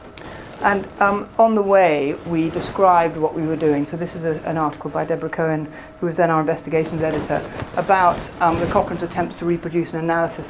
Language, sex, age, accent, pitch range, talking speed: English, female, 40-59, British, 150-175 Hz, 195 wpm